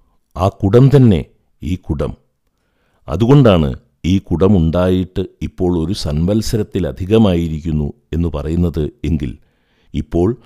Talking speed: 85 wpm